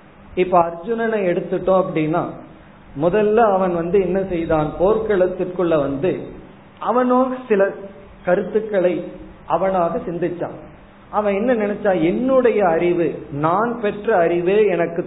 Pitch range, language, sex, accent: 160-200 Hz, Tamil, male, native